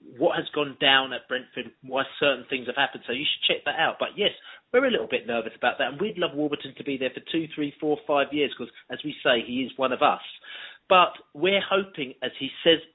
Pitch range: 130-165 Hz